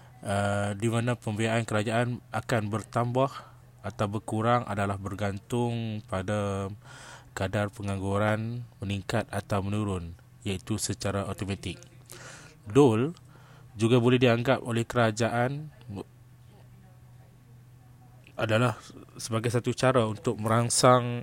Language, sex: Malay, male